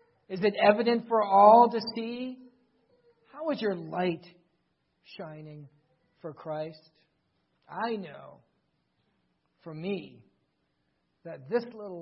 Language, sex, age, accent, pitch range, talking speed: English, male, 50-69, American, 165-240 Hz, 105 wpm